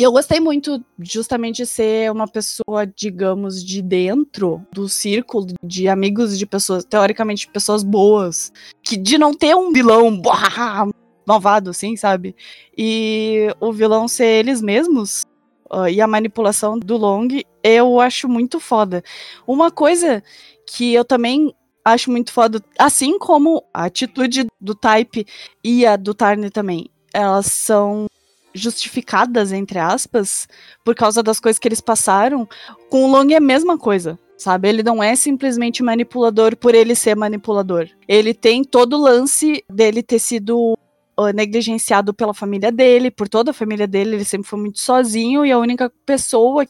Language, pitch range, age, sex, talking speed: Portuguese, 205-245 Hz, 10-29, female, 155 wpm